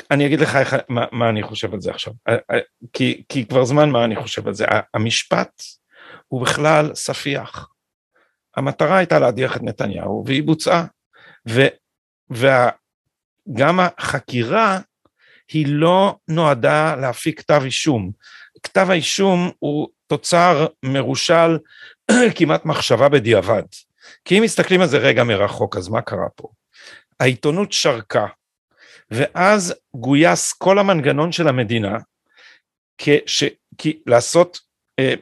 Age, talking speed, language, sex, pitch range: 50-69, 120 wpm, Hebrew, male, 130-170 Hz